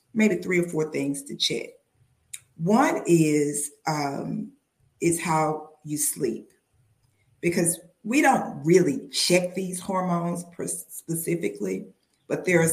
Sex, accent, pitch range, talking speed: female, American, 145-180 Hz, 125 wpm